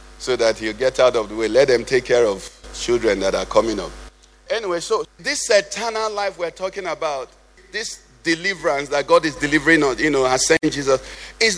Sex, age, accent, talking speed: male, 50-69, Nigerian, 200 wpm